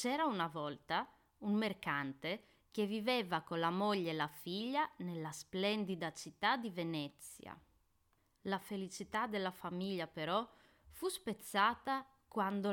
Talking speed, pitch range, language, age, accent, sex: 125 wpm, 170-235 Hz, Italian, 20-39, native, female